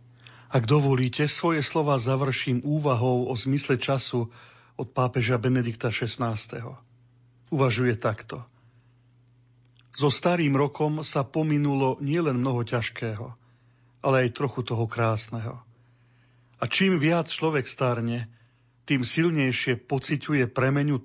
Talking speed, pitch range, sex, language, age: 105 wpm, 120-135 Hz, male, Slovak, 40-59